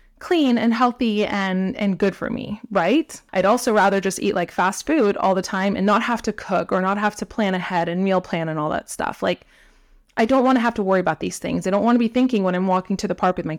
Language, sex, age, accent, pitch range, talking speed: English, female, 20-39, American, 180-245 Hz, 270 wpm